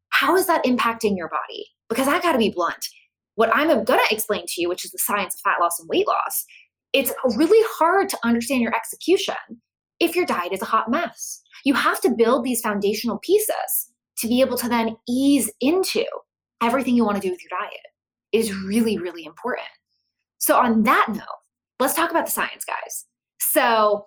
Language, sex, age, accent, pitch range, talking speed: English, female, 20-39, American, 200-285 Hz, 195 wpm